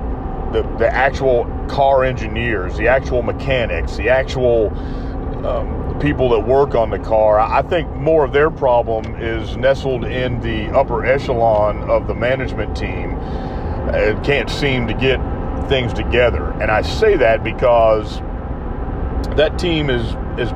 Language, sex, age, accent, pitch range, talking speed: English, male, 40-59, American, 100-130 Hz, 140 wpm